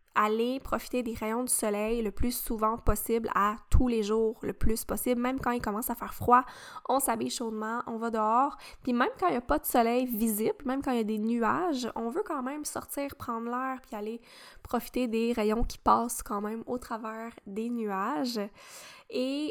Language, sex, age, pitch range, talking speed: French, female, 10-29, 215-250 Hz, 210 wpm